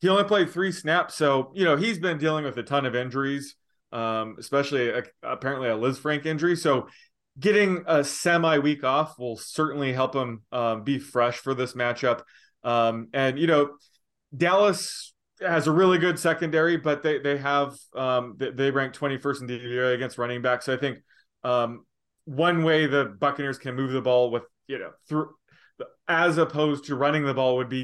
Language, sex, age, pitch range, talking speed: English, male, 20-39, 125-155 Hz, 190 wpm